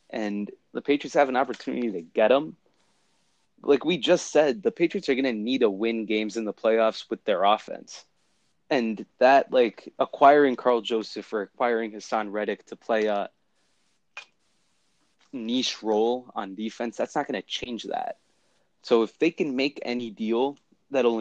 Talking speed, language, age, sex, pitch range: 170 wpm, English, 20-39, male, 110-130 Hz